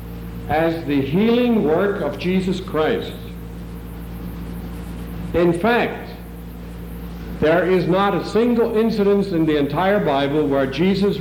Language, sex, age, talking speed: English, male, 60-79, 110 wpm